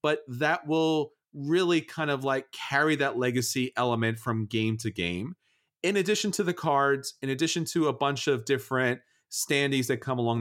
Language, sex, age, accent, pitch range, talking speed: English, male, 40-59, American, 115-145 Hz, 180 wpm